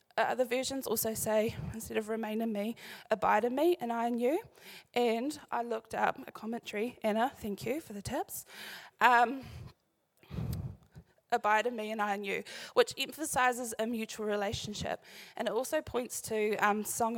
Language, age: English, 10-29